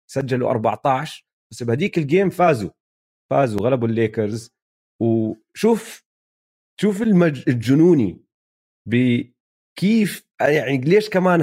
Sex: male